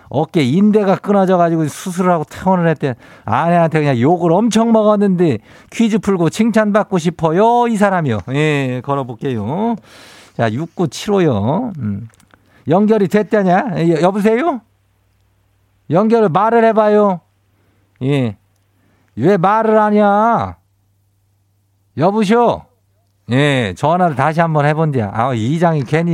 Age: 50-69